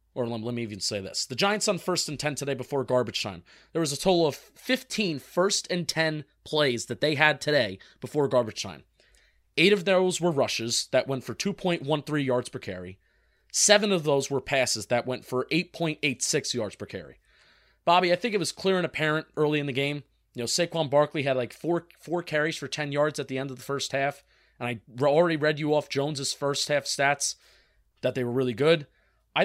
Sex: male